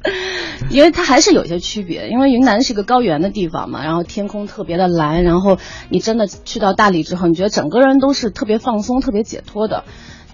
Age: 30-49